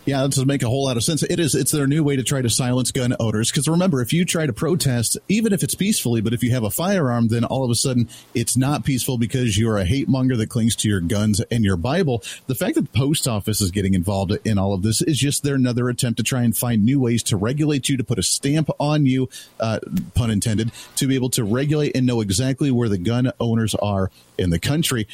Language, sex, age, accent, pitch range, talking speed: English, male, 40-59, American, 115-145 Hz, 265 wpm